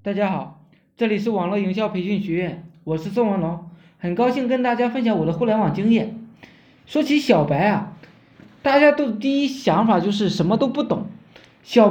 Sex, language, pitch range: male, Chinese, 195-270 Hz